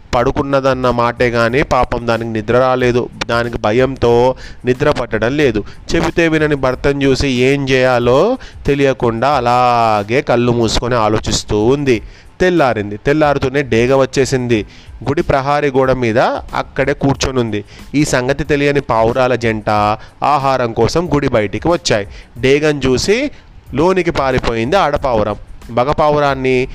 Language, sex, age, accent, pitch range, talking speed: Telugu, male, 30-49, native, 115-140 Hz, 115 wpm